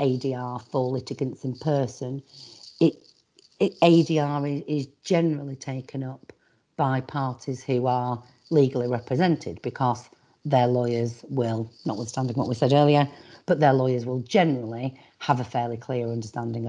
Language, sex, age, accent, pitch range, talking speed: English, female, 40-59, British, 125-150 Hz, 130 wpm